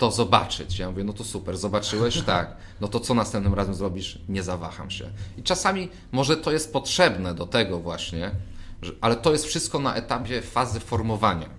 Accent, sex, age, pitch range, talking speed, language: native, male, 30-49, 95-120 Hz, 185 wpm, Polish